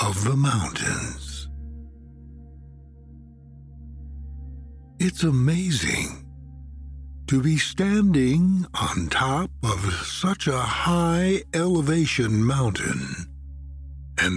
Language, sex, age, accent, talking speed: English, male, 60-79, American, 70 wpm